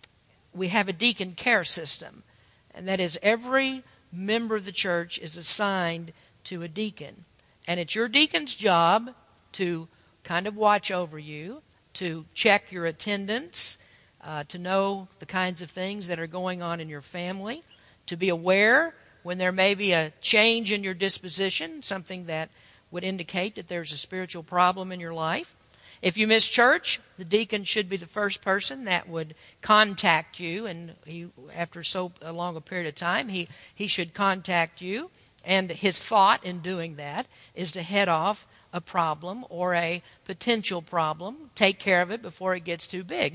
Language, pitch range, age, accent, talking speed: English, 170-215 Hz, 50-69, American, 175 wpm